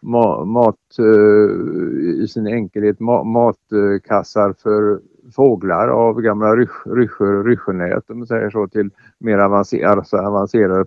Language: Swedish